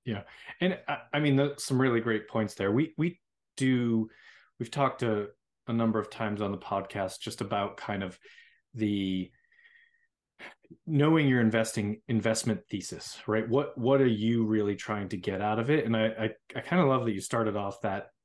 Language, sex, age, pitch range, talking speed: English, male, 30-49, 100-130 Hz, 190 wpm